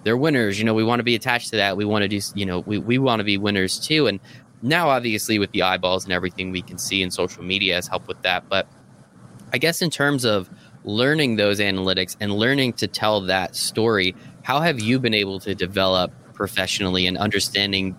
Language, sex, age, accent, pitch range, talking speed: English, male, 20-39, American, 100-130 Hz, 225 wpm